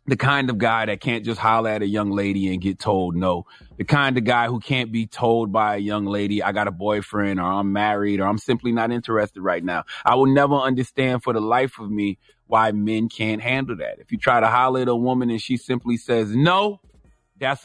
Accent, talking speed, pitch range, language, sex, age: American, 240 wpm, 115-145 Hz, English, male, 30-49